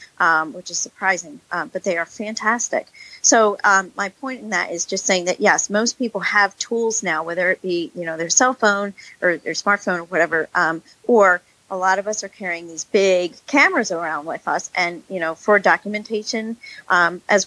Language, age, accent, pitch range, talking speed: English, 40-59, American, 175-210 Hz, 205 wpm